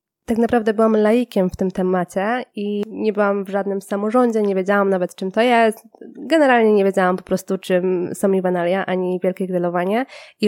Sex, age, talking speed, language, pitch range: female, 20-39, 185 wpm, Polish, 185-225 Hz